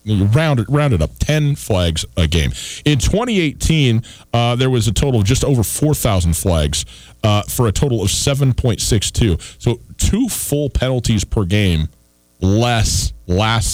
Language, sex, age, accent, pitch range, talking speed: English, male, 40-59, American, 90-125 Hz, 155 wpm